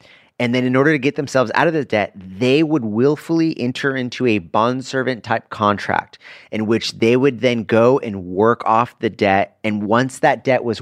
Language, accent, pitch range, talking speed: English, American, 105-130 Hz, 205 wpm